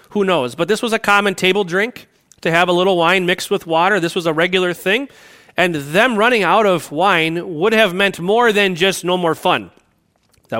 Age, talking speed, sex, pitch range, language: 30-49, 215 wpm, male, 155-200 Hz, English